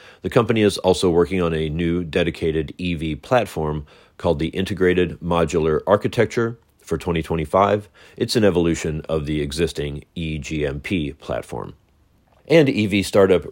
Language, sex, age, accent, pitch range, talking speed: English, male, 40-59, American, 80-95 Hz, 130 wpm